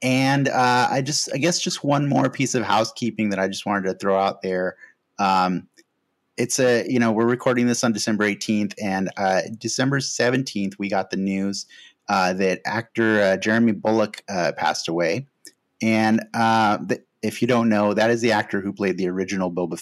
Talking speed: 195 wpm